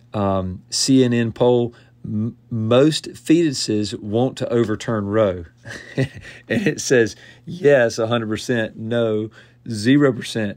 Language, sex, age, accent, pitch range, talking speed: English, male, 40-59, American, 105-130 Hz, 115 wpm